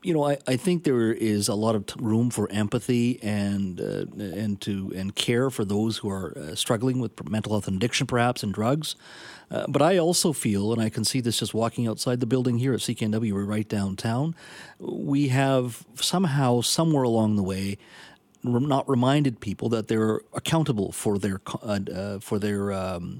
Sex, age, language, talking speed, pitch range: male, 40-59, English, 195 wpm, 105-130 Hz